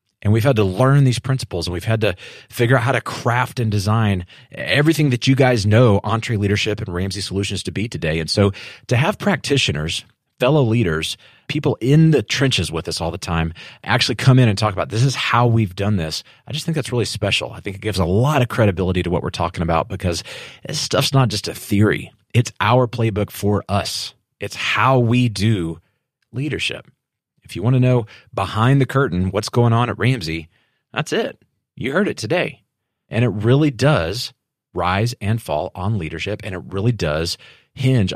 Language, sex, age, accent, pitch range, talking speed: English, male, 30-49, American, 95-125 Hz, 200 wpm